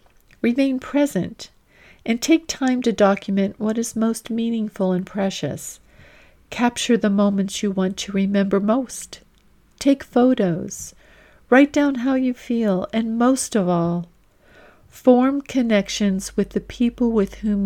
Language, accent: English, American